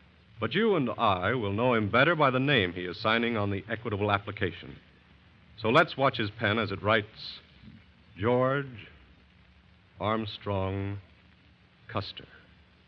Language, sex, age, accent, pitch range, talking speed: English, male, 60-79, American, 95-150 Hz, 135 wpm